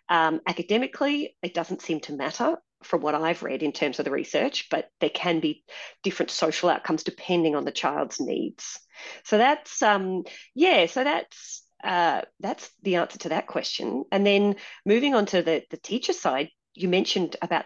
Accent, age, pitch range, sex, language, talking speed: Australian, 40-59, 160-205 Hz, female, English, 180 wpm